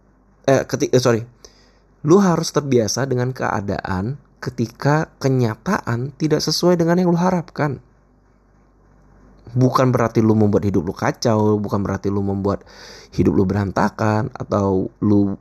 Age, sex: 20-39, male